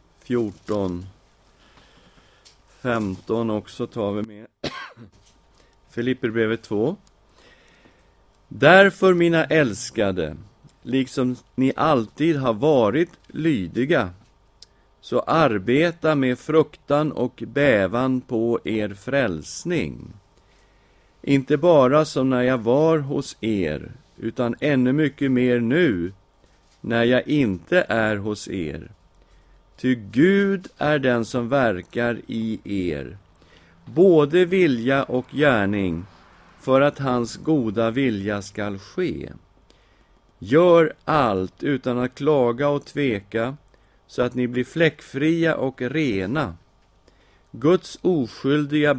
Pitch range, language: 105-140 Hz, Swedish